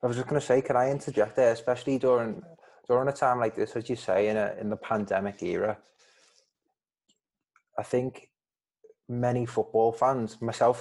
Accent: British